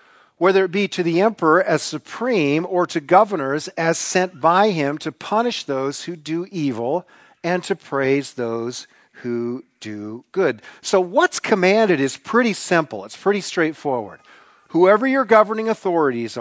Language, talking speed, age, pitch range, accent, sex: English, 150 wpm, 50-69, 140-180 Hz, American, male